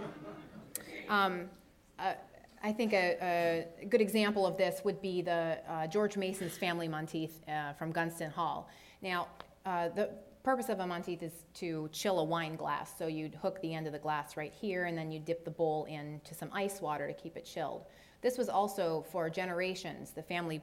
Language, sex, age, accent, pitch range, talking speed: English, female, 30-49, American, 170-210 Hz, 190 wpm